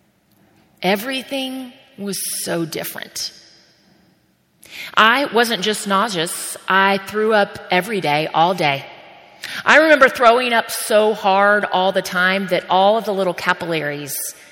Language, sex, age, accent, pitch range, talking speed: English, female, 30-49, American, 165-210 Hz, 125 wpm